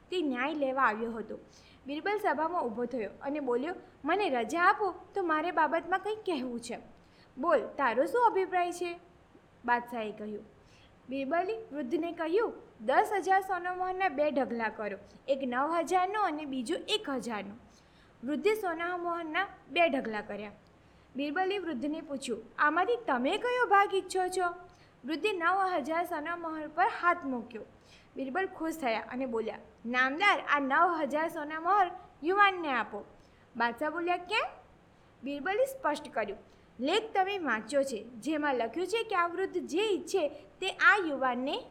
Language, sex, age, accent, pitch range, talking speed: Gujarati, female, 20-39, native, 260-370 Hz, 140 wpm